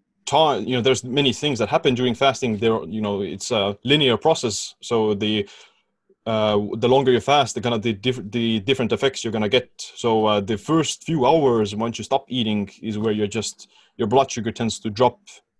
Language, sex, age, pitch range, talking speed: English, male, 20-39, 105-125 Hz, 210 wpm